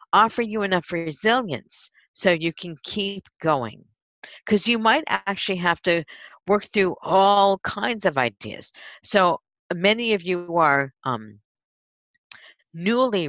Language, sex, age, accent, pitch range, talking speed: English, female, 50-69, American, 150-205 Hz, 125 wpm